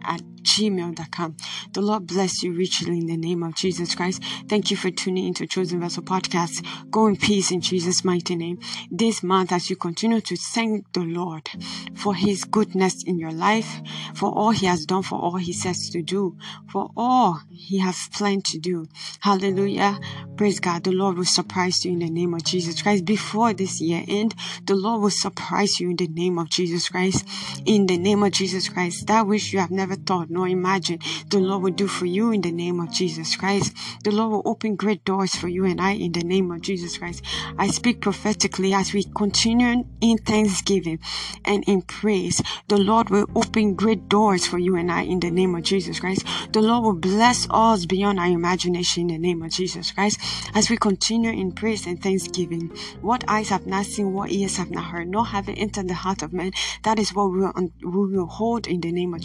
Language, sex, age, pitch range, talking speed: English, female, 20-39, 175-205 Hz, 210 wpm